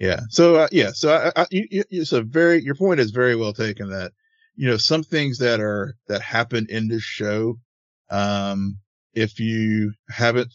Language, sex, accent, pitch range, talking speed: English, male, American, 100-120 Hz, 200 wpm